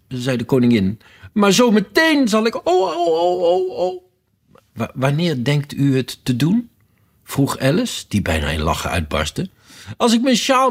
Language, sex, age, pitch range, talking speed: Dutch, male, 60-79, 100-145 Hz, 175 wpm